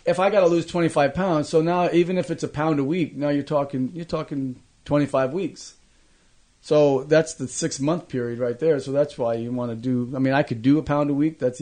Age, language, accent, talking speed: 30-49, English, American, 250 wpm